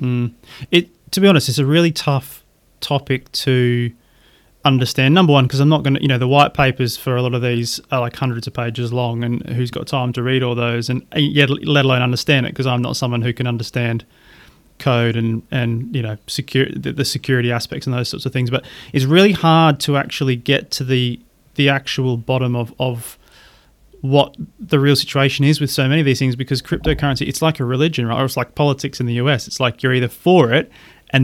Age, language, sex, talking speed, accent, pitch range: 30-49, English, male, 225 wpm, Australian, 125-145 Hz